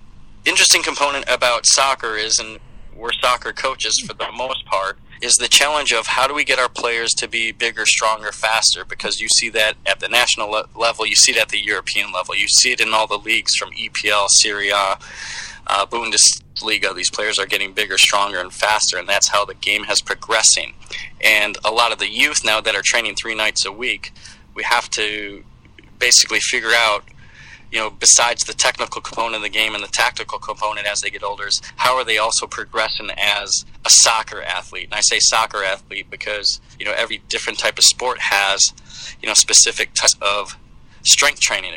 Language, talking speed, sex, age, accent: English, 200 wpm, male, 20-39, American